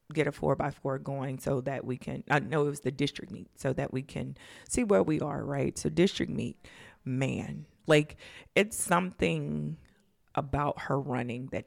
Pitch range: 135-165 Hz